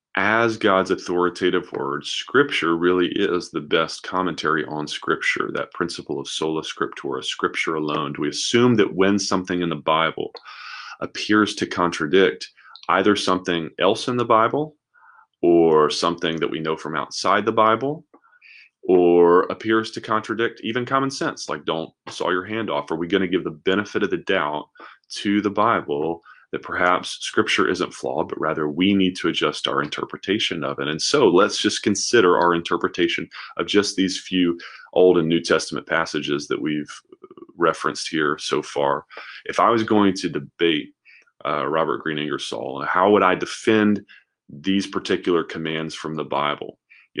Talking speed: 165 wpm